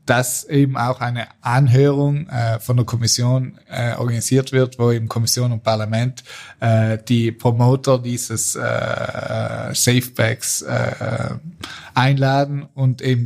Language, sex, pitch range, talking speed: German, male, 115-130 Hz, 120 wpm